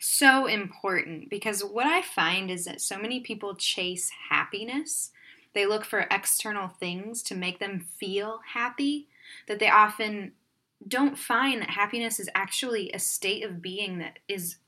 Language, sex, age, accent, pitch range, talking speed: English, female, 10-29, American, 195-260 Hz, 155 wpm